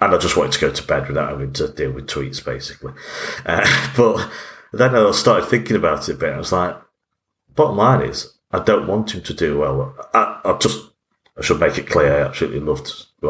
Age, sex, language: 40-59, male, English